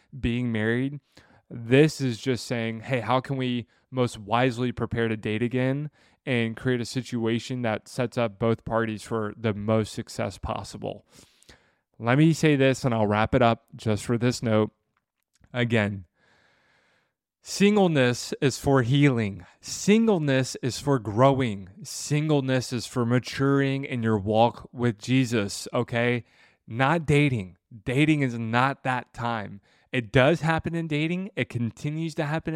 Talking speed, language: 145 wpm, English